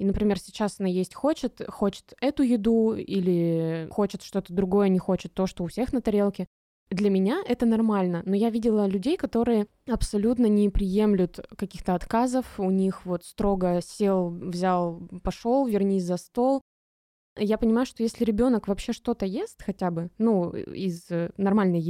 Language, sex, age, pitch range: Russian, female, 20-39, 190-235 Hz